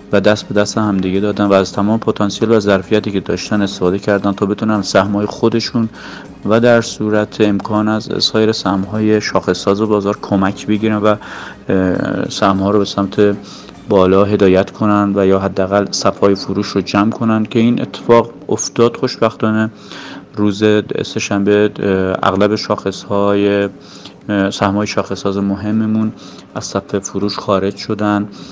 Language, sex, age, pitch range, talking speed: Persian, male, 30-49, 100-110 Hz, 140 wpm